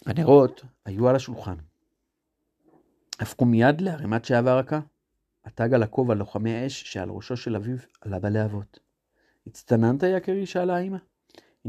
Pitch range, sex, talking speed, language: 110-155 Hz, male, 130 wpm, Hebrew